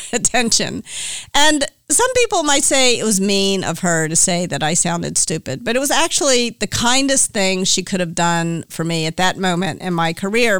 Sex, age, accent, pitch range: female, 50-69, American, 185-245 Hz